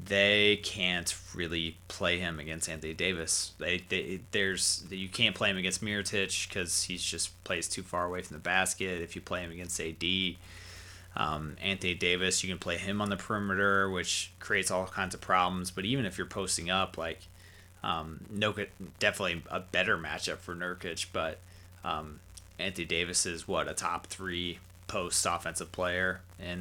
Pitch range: 90-95 Hz